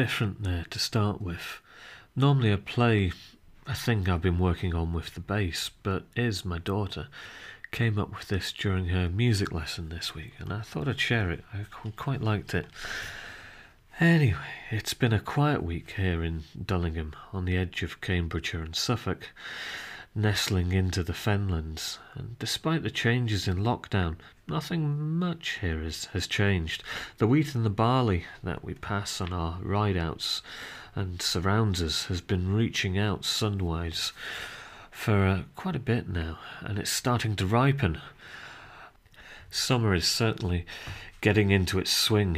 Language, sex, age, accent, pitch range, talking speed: English, male, 40-59, British, 90-115 Hz, 155 wpm